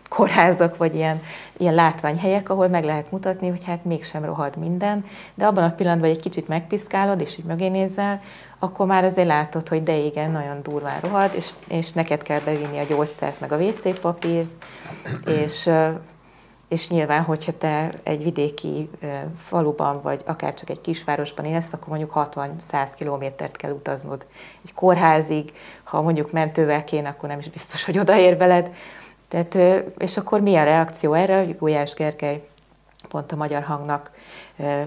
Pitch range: 150-175 Hz